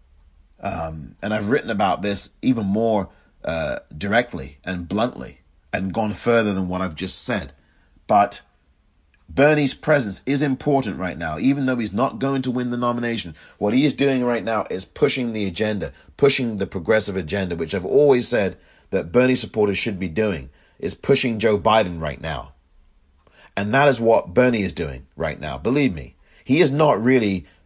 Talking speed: 175 wpm